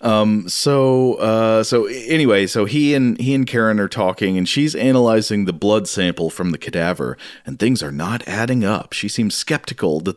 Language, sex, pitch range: English, male, 95-125 Hz